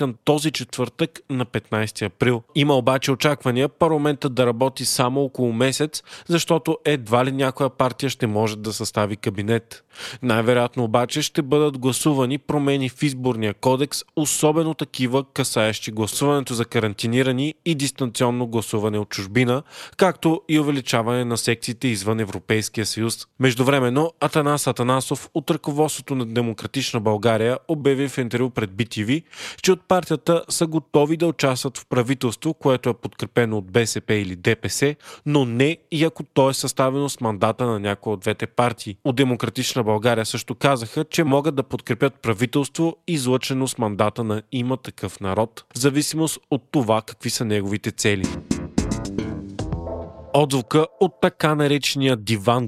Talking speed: 145 wpm